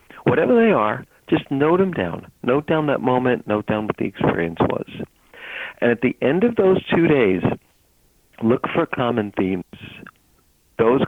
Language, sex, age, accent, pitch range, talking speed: English, male, 50-69, American, 105-150 Hz, 160 wpm